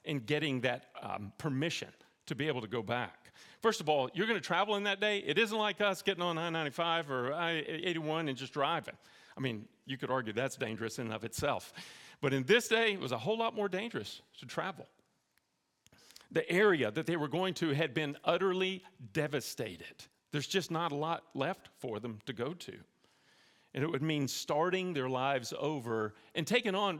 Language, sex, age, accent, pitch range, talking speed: English, male, 40-59, American, 140-190 Hz, 200 wpm